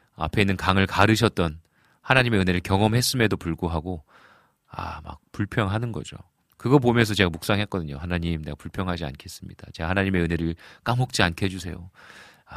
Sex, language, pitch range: male, Korean, 80-110 Hz